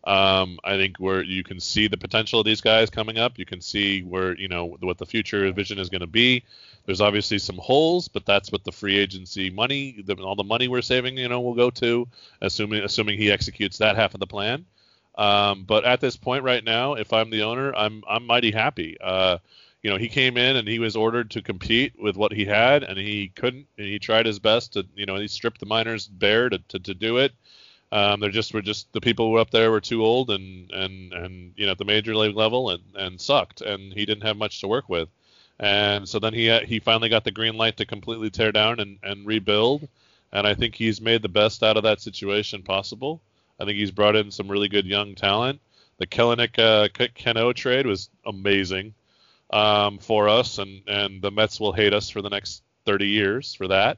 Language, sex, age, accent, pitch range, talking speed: English, male, 20-39, American, 100-115 Hz, 230 wpm